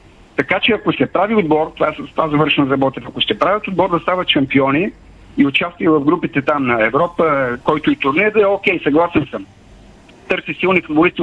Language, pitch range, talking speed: Bulgarian, 150-185 Hz, 190 wpm